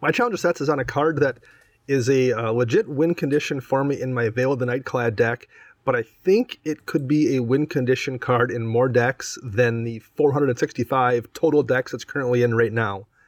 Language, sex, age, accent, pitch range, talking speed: English, male, 30-49, American, 120-150 Hz, 215 wpm